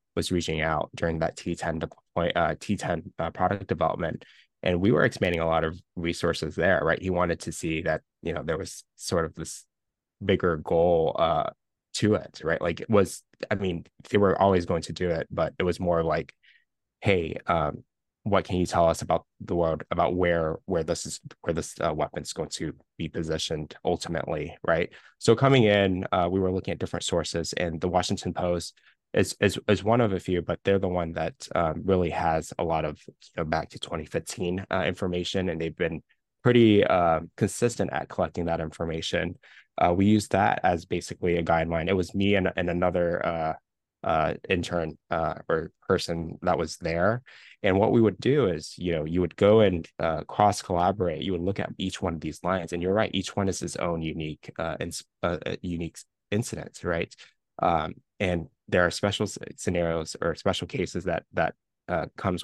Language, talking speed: English, 200 wpm